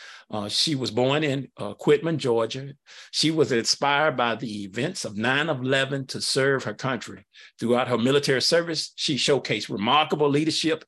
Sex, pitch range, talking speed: male, 115-140 Hz, 155 wpm